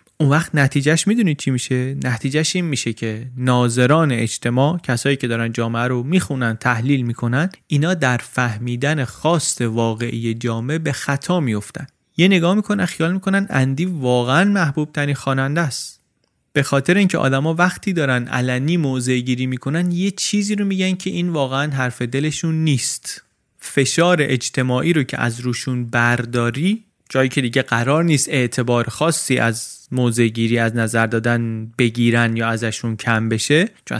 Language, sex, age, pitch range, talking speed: Persian, male, 30-49, 115-155 Hz, 150 wpm